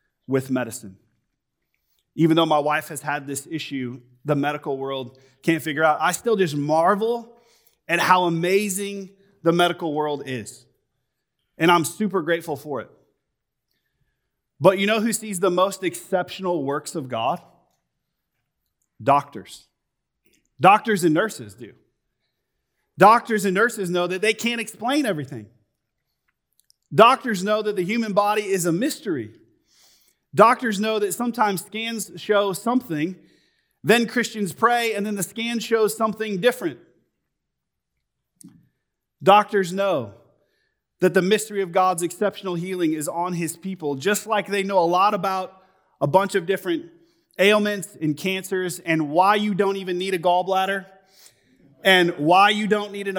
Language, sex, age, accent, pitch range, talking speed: English, male, 30-49, American, 160-210 Hz, 140 wpm